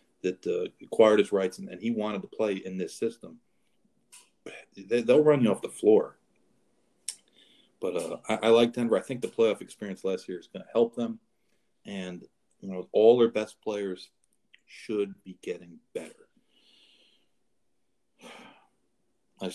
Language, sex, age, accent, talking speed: English, male, 40-59, American, 155 wpm